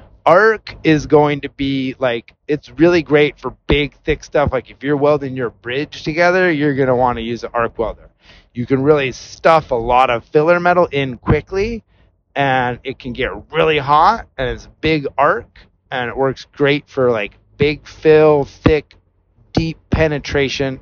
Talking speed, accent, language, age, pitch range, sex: 180 wpm, American, English, 30-49, 115-155 Hz, male